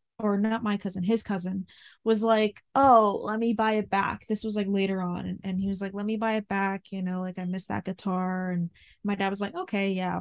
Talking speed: 245 wpm